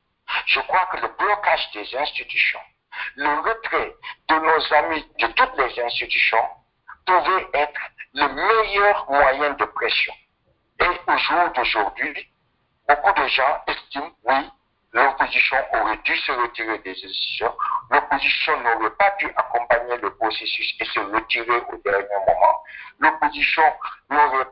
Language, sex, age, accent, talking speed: French, male, 60-79, French, 130 wpm